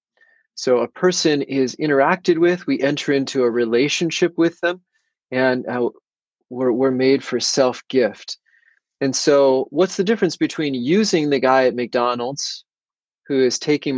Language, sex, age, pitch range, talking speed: English, male, 30-49, 125-165 Hz, 150 wpm